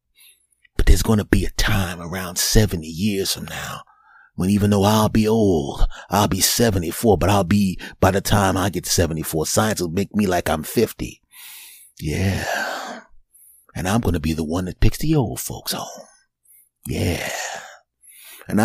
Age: 30-49